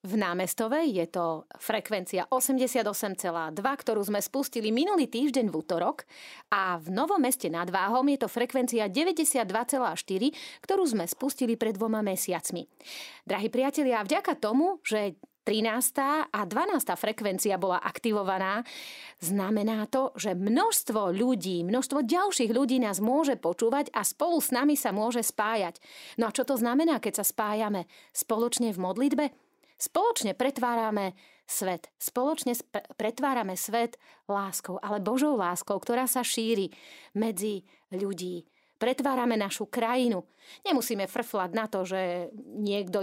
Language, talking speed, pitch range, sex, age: Slovak, 130 wpm, 195-265 Hz, female, 30-49